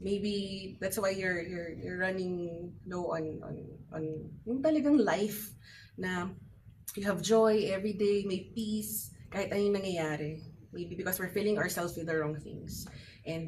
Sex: female